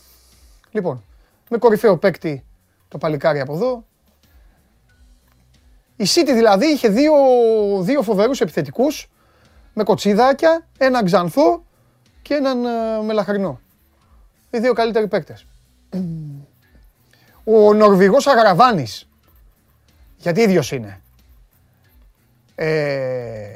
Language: Greek